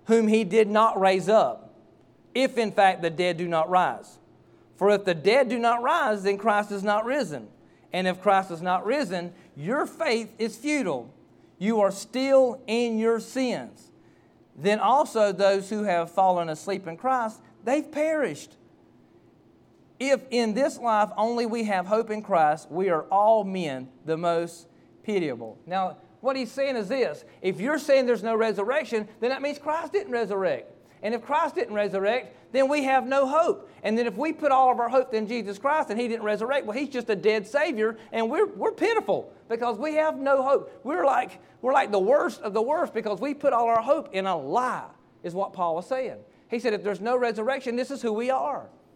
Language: English